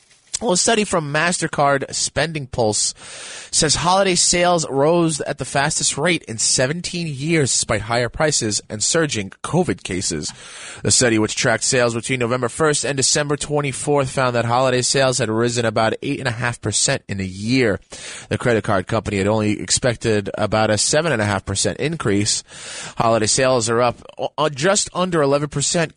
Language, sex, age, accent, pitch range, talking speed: English, male, 20-39, American, 110-145 Hz, 150 wpm